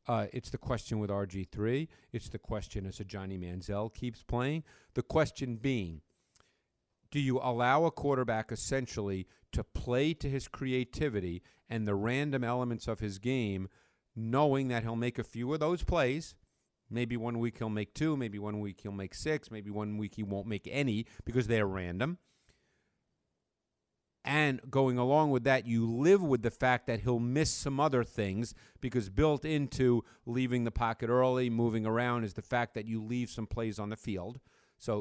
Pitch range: 110-135 Hz